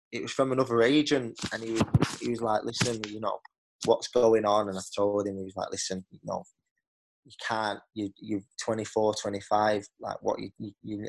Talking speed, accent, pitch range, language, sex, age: 195 wpm, British, 110-130 Hz, English, male, 20-39